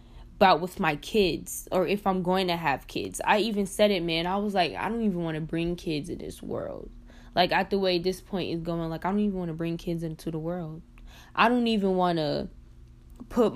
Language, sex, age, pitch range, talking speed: English, female, 10-29, 165-210 Hz, 240 wpm